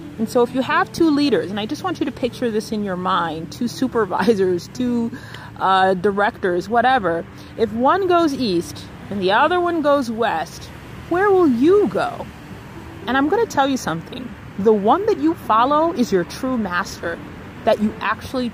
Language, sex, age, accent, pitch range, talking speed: English, female, 30-49, American, 215-275 Hz, 185 wpm